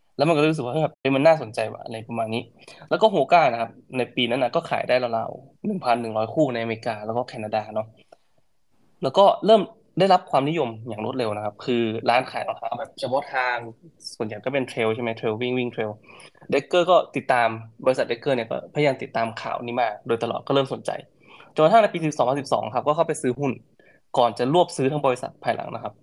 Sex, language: male, Thai